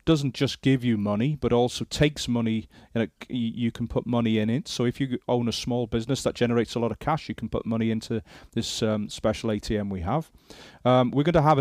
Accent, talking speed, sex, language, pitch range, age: British, 235 wpm, male, English, 115-140 Hz, 30-49